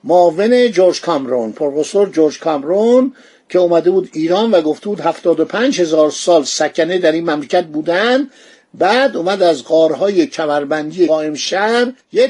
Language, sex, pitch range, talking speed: Persian, male, 165-215 Hz, 140 wpm